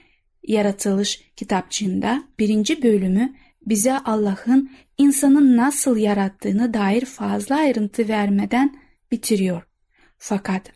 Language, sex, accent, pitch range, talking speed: Turkish, female, native, 205-260 Hz, 85 wpm